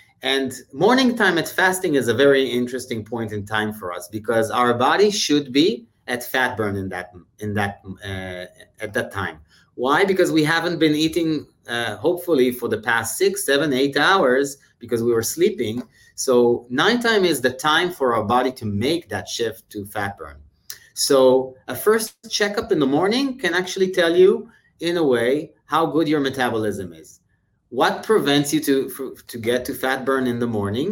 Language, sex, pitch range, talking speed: English, male, 110-155 Hz, 185 wpm